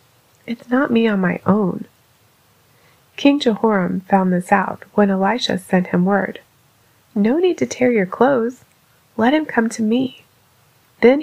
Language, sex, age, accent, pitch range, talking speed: English, female, 30-49, American, 175-230 Hz, 150 wpm